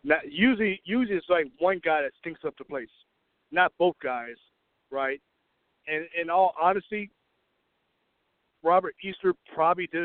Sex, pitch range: male, 145-175 Hz